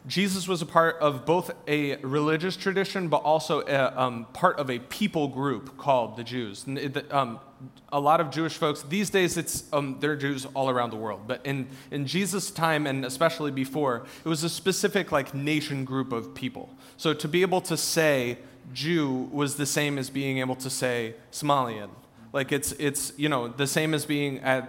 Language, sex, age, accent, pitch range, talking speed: English, male, 30-49, American, 130-160 Hz, 200 wpm